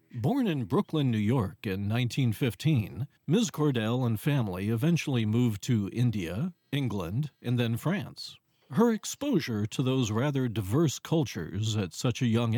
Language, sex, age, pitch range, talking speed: English, male, 50-69, 115-155 Hz, 145 wpm